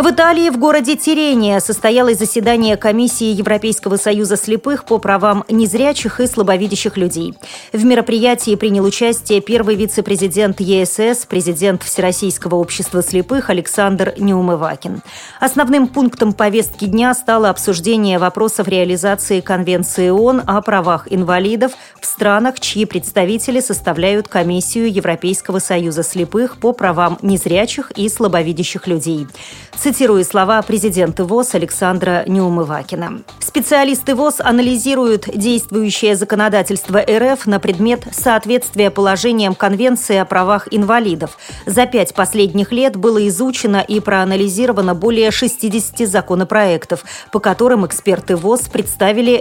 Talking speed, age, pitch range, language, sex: 115 wpm, 30-49, 190-235 Hz, Russian, female